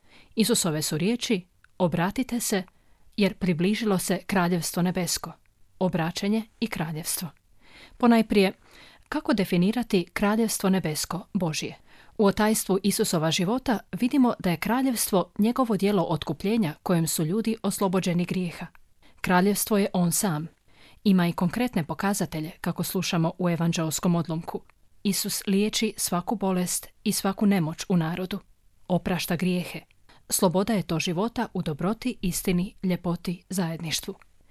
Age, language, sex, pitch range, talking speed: 30-49, Croatian, female, 175-210 Hz, 120 wpm